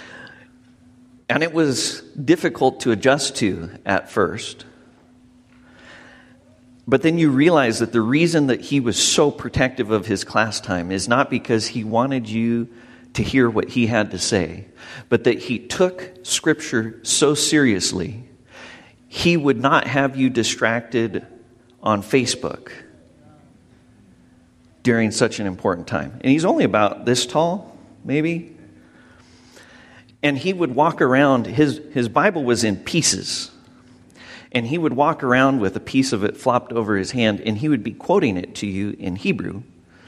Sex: male